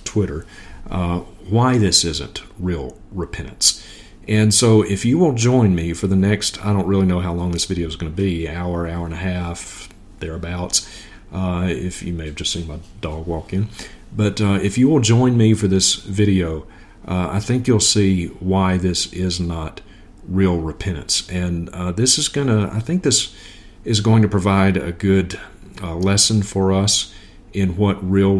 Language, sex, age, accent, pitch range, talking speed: English, male, 40-59, American, 85-100 Hz, 190 wpm